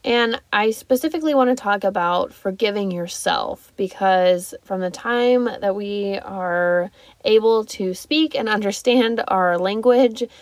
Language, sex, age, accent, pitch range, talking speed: English, female, 20-39, American, 185-235 Hz, 135 wpm